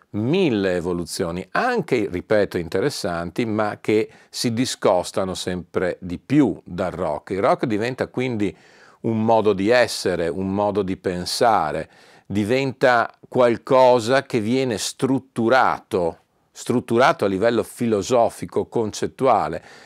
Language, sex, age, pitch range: Italian, male, 50-69, 95-125 Hz